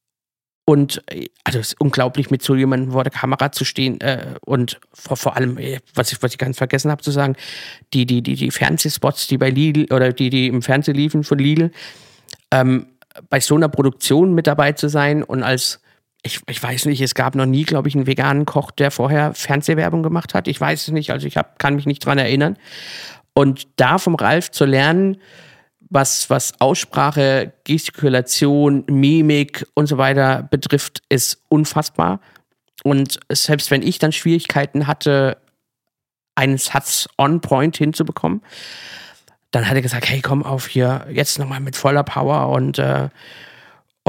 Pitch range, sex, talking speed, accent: 130-150 Hz, male, 175 wpm, German